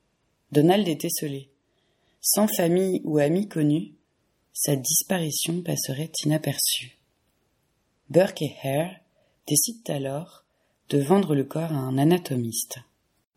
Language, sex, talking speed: French, female, 105 wpm